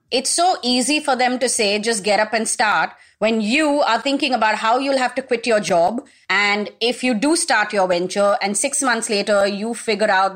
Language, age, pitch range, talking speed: English, 30-49, 195-250 Hz, 220 wpm